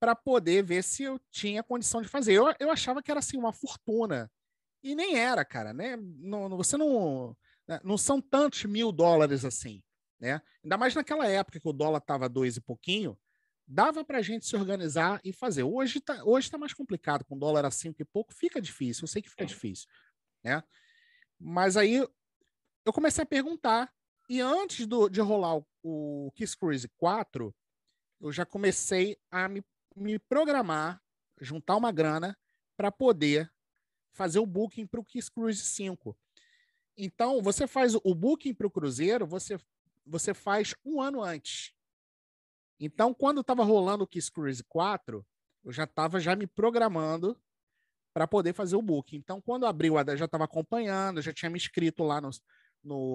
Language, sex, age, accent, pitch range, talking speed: Portuguese, male, 40-59, Brazilian, 155-240 Hz, 175 wpm